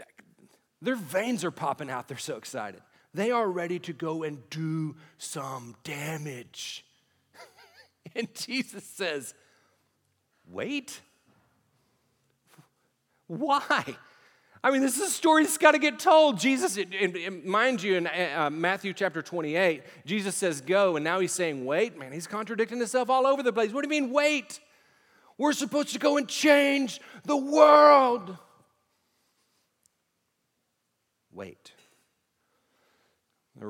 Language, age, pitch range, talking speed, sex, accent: English, 40-59, 130-205 Hz, 125 wpm, male, American